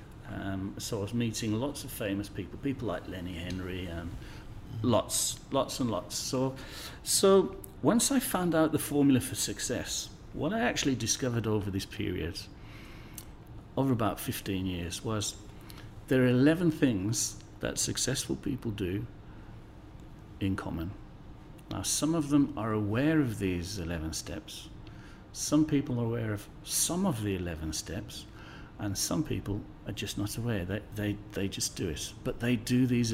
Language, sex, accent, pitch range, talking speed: English, male, British, 100-130 Hz, 160 wpm